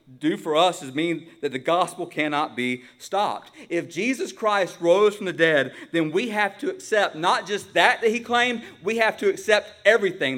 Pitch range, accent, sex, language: 145-210 Hz, American, male, English